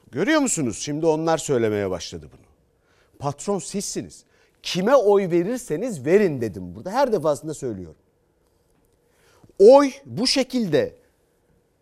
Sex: male